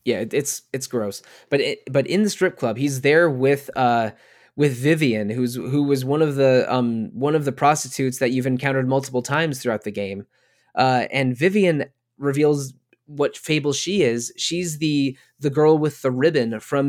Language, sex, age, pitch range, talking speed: English, male, 20-39, 125-140 Hz, 185 wpm